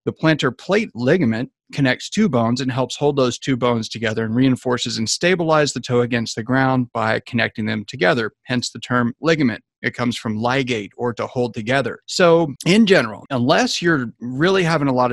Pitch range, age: 115-145 Hz, 30-49